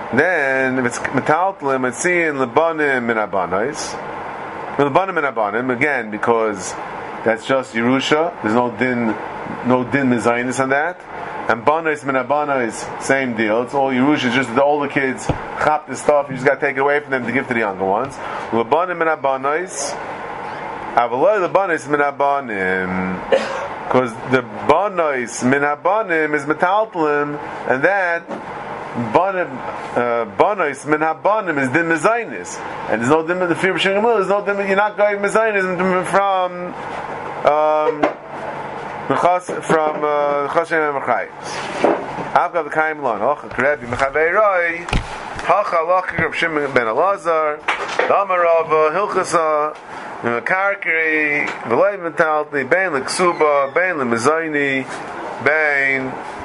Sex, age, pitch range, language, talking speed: male, 30-49, 130-165 Hz, English, 100 wpm